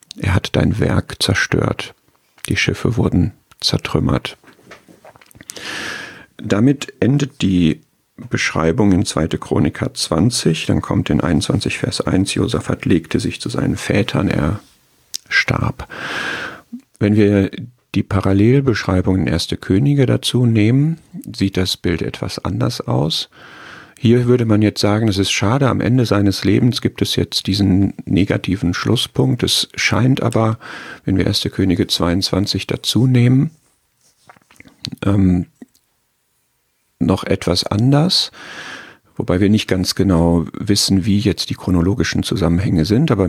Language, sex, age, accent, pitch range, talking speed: German, male, 50-69, German, 90-120 Hz, 125 wpm